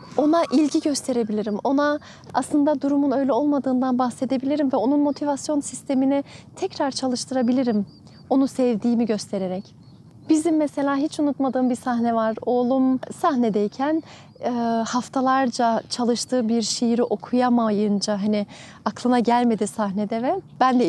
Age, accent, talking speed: 30-49, native, 110 wpm